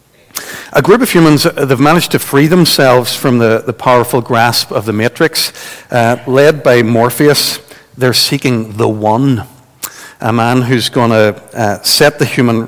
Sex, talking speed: male, 155 wpm